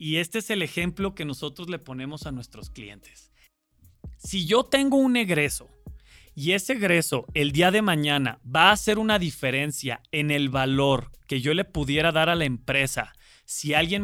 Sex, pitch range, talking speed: male, 140-200 Hz, 180 wpm